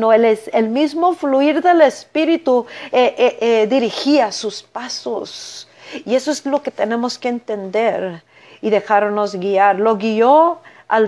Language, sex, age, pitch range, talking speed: Spanish, female, 40-59, 210-290 Hz, 150 wpm